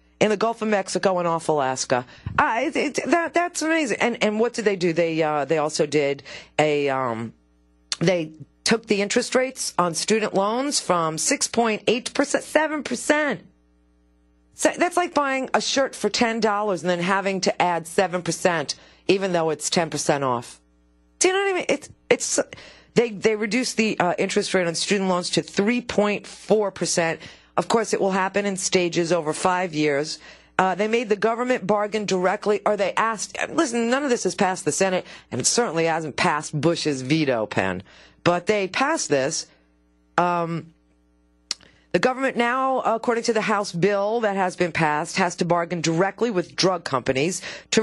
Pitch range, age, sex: 160-220 Hz, 40-59, female